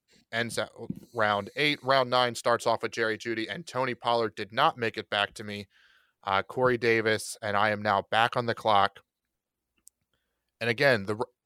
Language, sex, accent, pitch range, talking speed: English, male, American, 105-120 Hz, 185 wpm